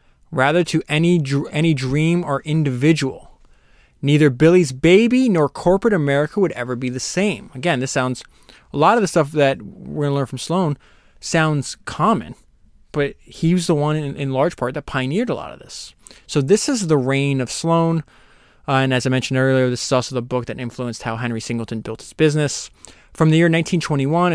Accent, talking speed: American, 200 wpm